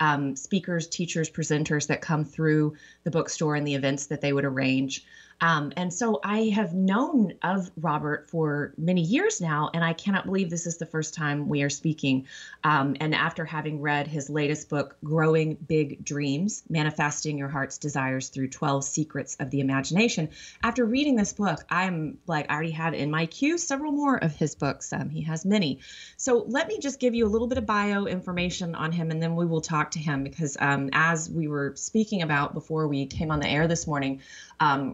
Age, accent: 30-49, American